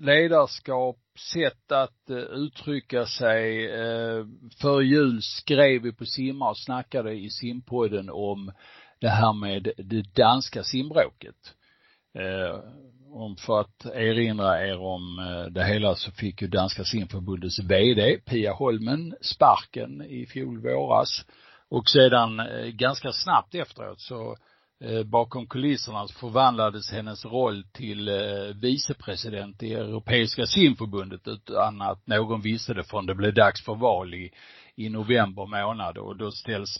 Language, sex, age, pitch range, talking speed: Swedish, male, 50-69, 100-125 Hz, 120 wpm